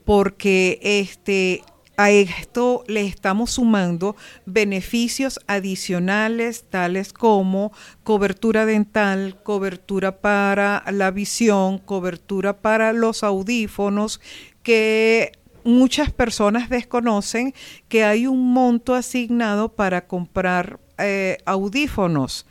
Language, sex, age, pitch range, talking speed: Spanish, female, 50-69, 185-225 Hz, 90 wpm